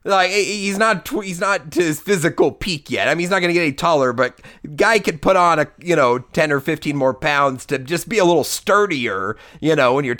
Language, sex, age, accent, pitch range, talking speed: English, male, 30-49, American, 120-165 Hz, 245 wpm